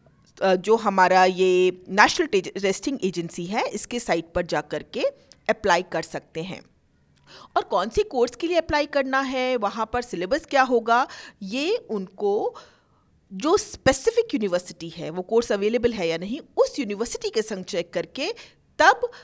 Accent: native